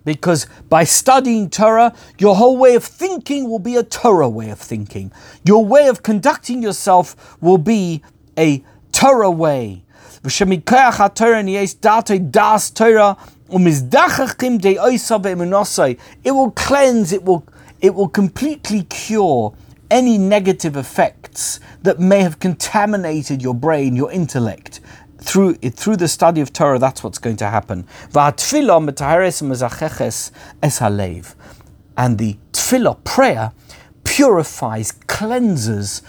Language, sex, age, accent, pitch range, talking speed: English, male, 50-69, British, 130-210 Hz, 105 wpm